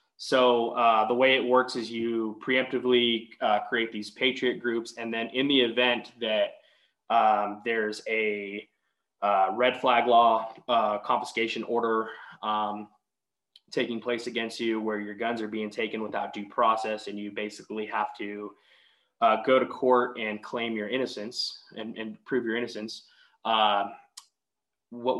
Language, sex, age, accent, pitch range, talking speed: English, male, 20-39, American, 110-125 Hz, 150 wpm